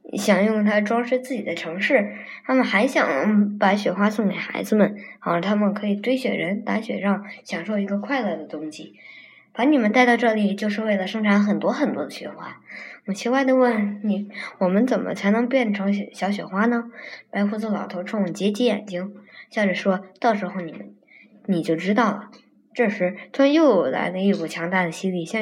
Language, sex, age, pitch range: Chinese, male, 20-39, 195-235 Hz